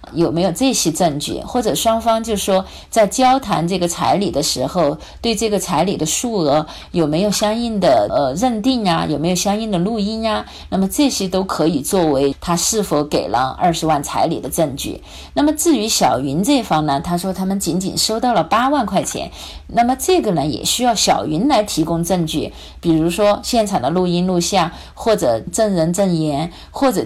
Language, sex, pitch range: Chinese, female, 165-220 Hz